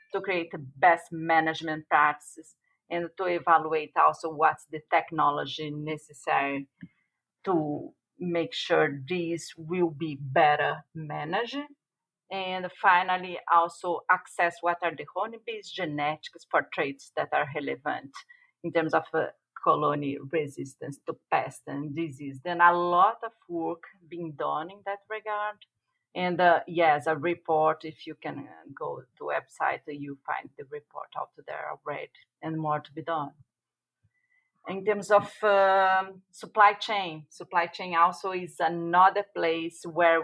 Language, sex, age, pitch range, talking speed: English, female, 40-59, 160-195 Hz, 140 wpm